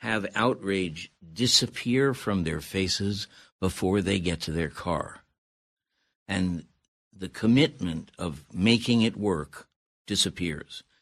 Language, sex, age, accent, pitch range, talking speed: English, male, 60-79, American, 85-110 Hz, 110 wpm